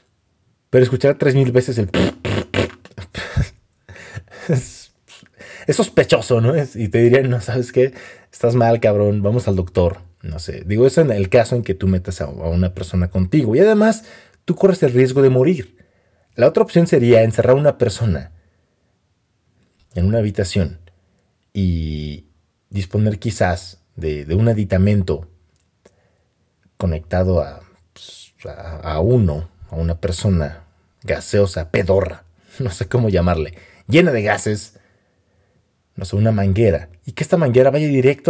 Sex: male